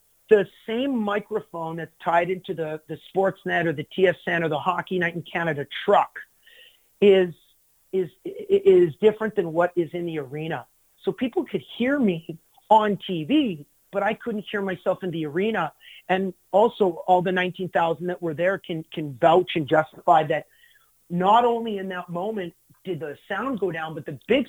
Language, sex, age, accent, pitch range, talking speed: English, male, 40-59, American, 160-205 Hz, 175 wpm